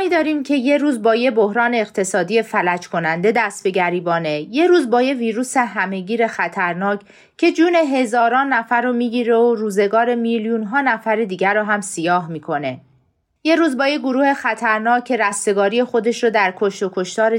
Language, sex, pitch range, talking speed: Persian, female, 195-245 Hz, 175 wpm